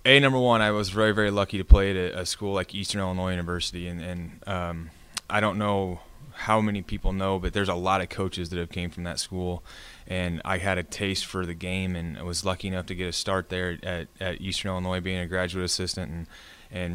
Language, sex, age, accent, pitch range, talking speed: English, male, 20-39, American, 85-95 Hz, 235 wpm